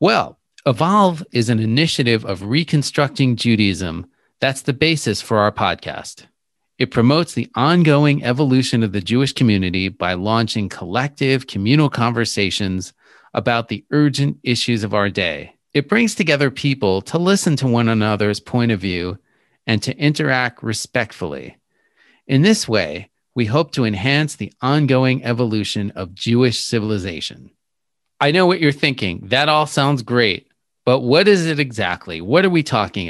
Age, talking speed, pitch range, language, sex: 40-59, 150 wpm, 110-145 Hz, English, male